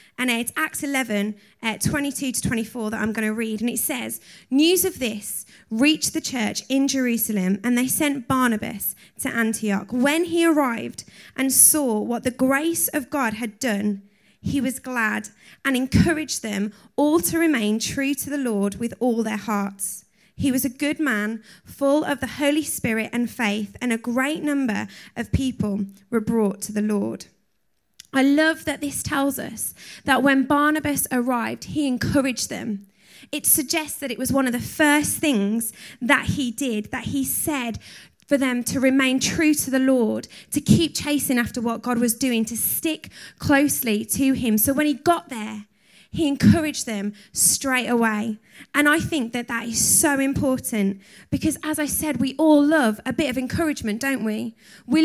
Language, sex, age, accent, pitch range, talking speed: English, female, 20-39, British, 220-295 Hz, 180 wpm